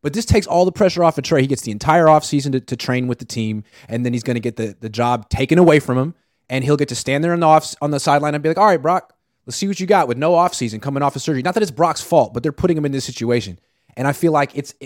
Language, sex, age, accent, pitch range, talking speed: English, male, 30-49, American, 125-170 Hz, 320 wpm